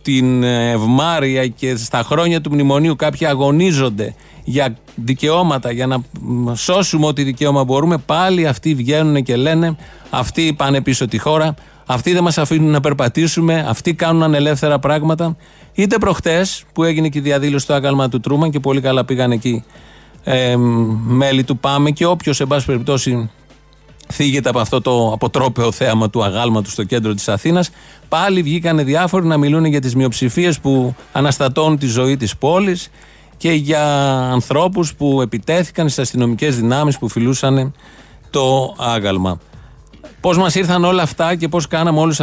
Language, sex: Greek, male